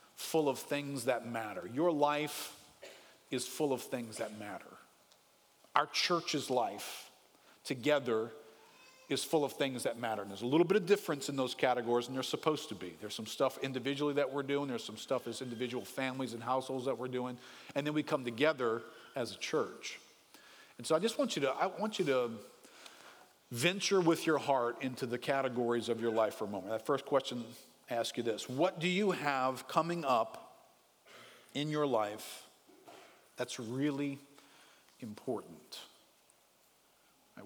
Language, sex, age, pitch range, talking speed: English, male, 50-69, 115-145 Hz, 170 wpm